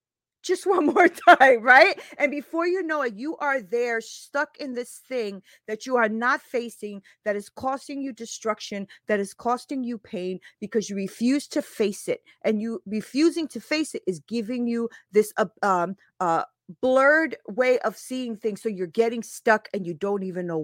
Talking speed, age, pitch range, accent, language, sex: 190 wpm, 40-59, 220-285 Hz, American, English, female